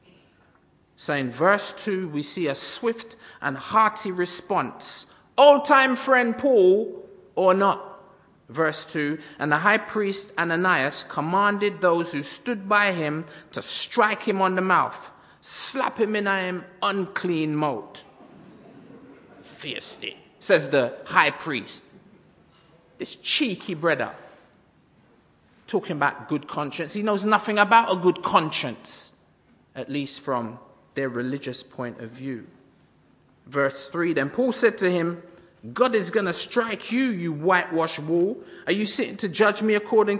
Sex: male